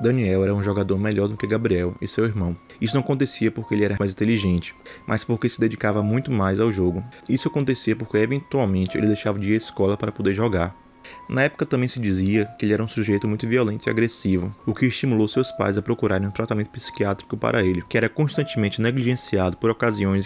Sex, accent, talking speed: male, Brazilian, 215 wpm